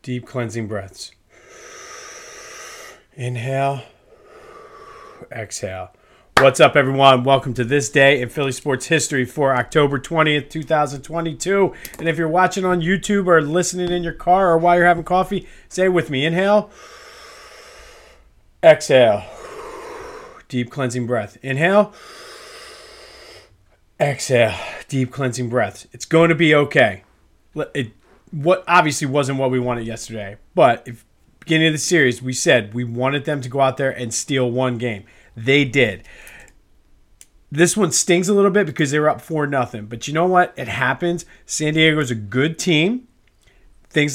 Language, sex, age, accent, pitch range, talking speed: English, male, 40-59, American, 130-175 Hz, 145 wpm